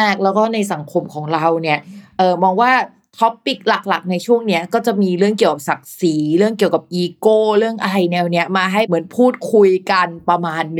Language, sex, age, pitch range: Thai, female, 20-39, 185-240 Hz